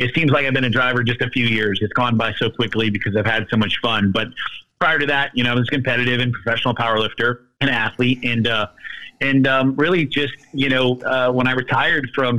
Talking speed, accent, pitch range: 240 wpm, American, 115-145 Hz